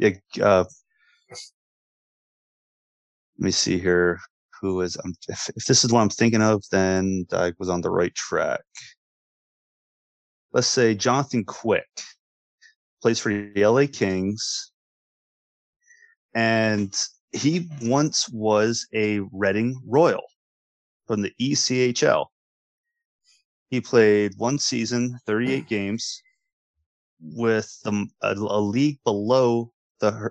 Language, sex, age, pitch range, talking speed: English, male, 30-49, 100-125 Hz, 105 wpm